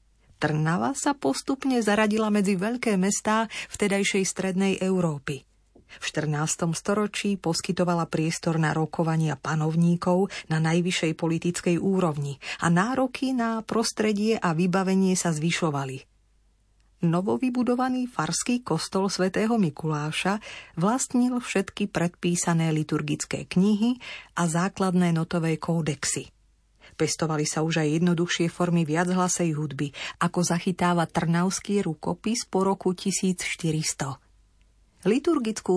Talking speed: 100 wpm